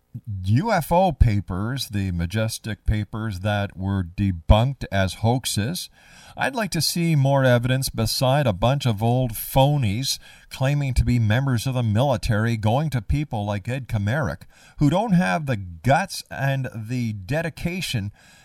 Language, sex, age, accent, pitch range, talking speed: English, male, 50-69, American, 95-140 Hz, 140 wpm